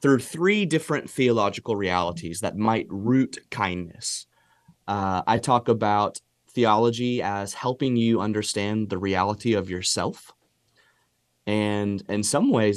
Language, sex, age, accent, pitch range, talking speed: English, male, 30-49, American, 105-135 Hz, 120 wpm